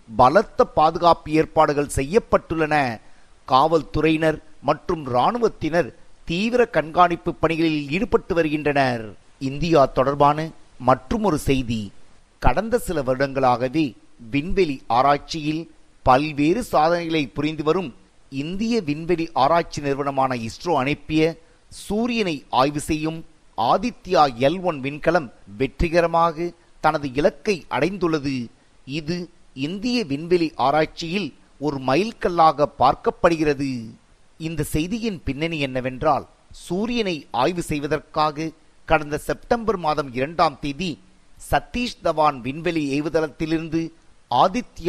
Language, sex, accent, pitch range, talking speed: Tamil, male, native, 140-170 Hz, 70 wpm